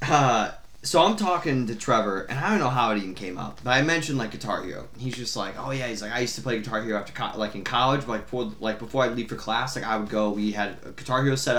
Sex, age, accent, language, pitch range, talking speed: male, 20-39, American, English, 110-145 Hz, 295 wpm